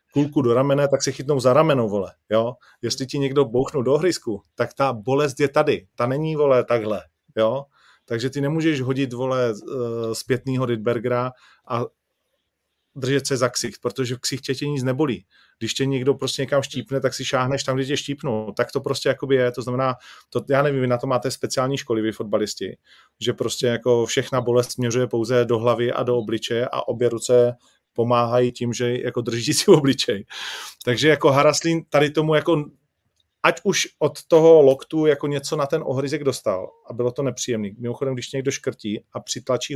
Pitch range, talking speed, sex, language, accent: 120-140 Hz, 185 wpm, male, Czech, native